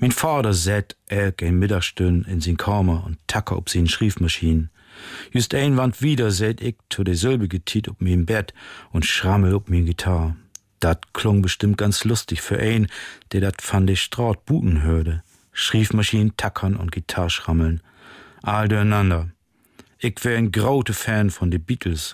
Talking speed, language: 165 wpm, German